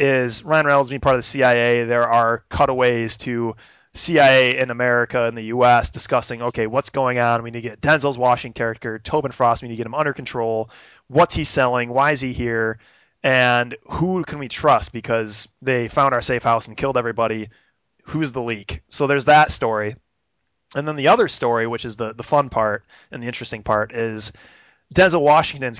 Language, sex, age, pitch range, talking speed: English, male, 20-39, 115-130 Hz, 200 wpm